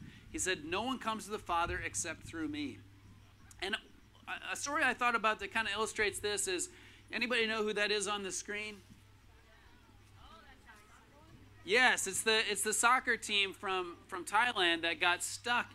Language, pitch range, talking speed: English, 170-230 Hz, 170 wpm